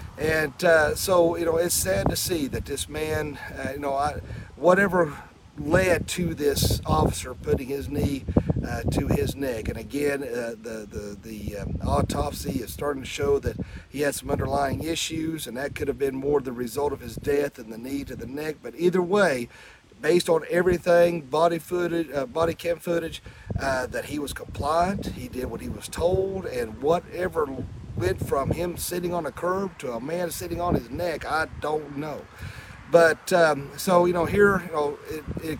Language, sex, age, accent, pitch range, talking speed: English, male, 40-59, American, 135-170 Hz, 190 wpm